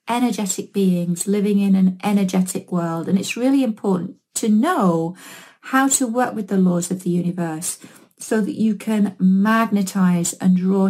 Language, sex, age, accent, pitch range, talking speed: English, female, 30-49, British, 185-245 Hz, 160 wpm